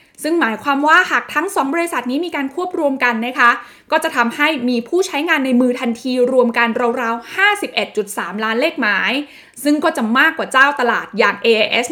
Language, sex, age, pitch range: Thai, female, 20-39, 230-295 Hz